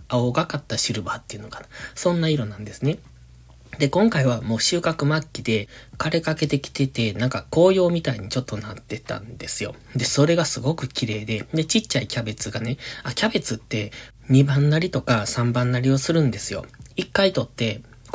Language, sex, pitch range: Japanese, male, 115-155 Hz